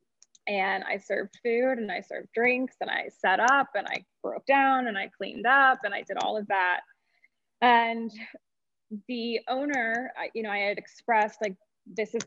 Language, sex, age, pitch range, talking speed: English, female, 20-39, 200-235 Hz, 185 wpm